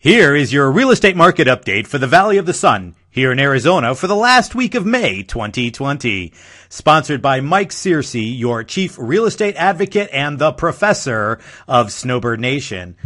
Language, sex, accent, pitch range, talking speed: English, male, American, 110-175 Hz, 175 wpm